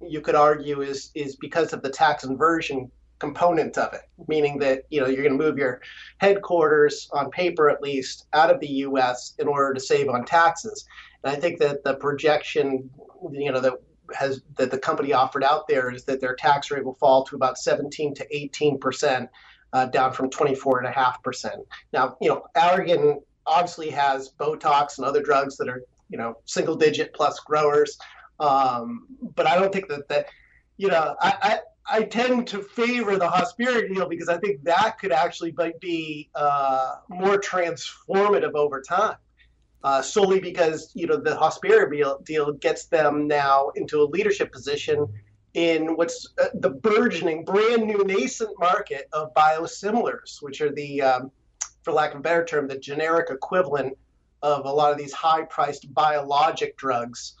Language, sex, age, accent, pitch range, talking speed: English, male, 30-49, American, 135-180 Hz, 175 wpm